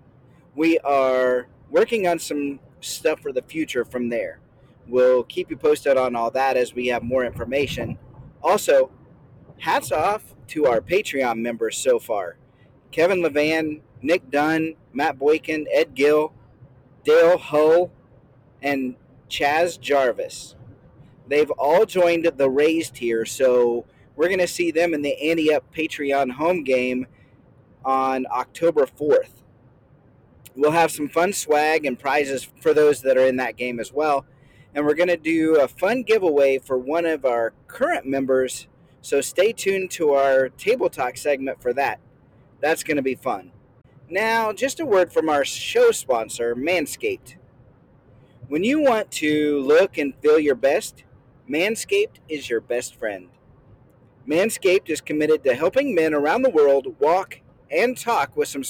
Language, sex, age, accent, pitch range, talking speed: English, male, 30-49, American, 130-170 Hz, 150 wpm